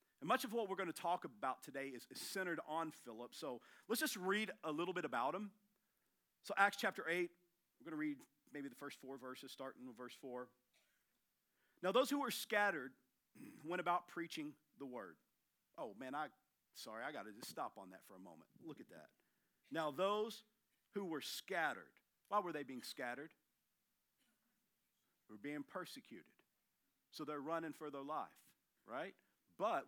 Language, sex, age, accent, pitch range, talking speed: English, male, 50-69, American, 135-205 Hz, 180 wpm